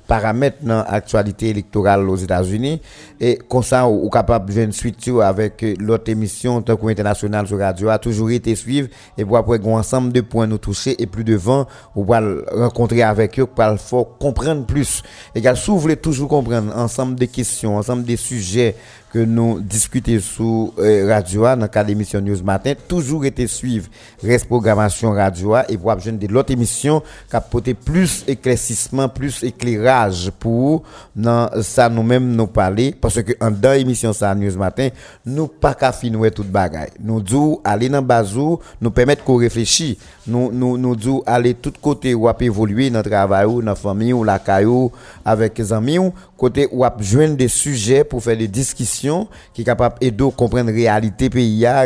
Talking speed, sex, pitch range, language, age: 165 wpm, male, 110-130 Hz, French, 50-69